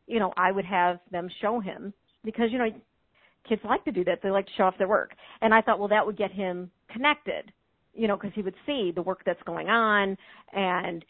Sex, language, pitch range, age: female, English, 185-220 Hz, 40-59